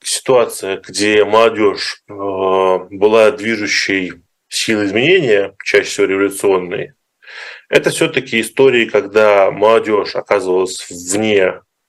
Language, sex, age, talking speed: Russian, male, 20-39, 90 wpm